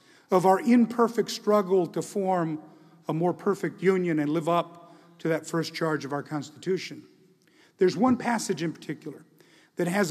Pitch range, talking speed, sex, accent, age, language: 155-195 Hz, 160 wpm, male, American, 50-69, English